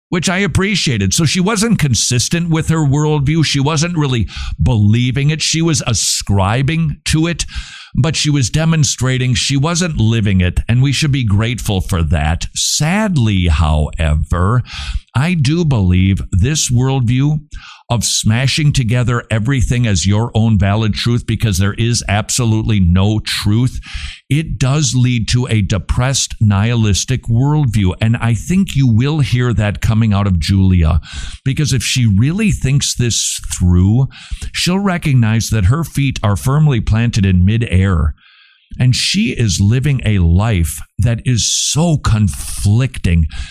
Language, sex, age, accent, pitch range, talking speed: English, male, 50-69, American, 95-135 Hz, 140 wpm